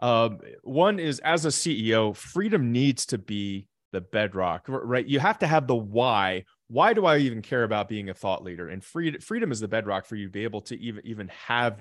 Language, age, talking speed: English, 30-49, 220 wpm